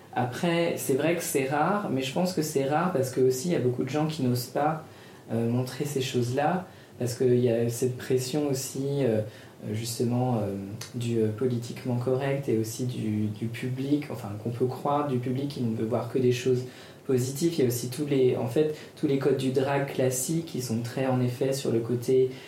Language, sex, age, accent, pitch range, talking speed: French, female, 20-39, French, 120-140 Hz, 220 wpm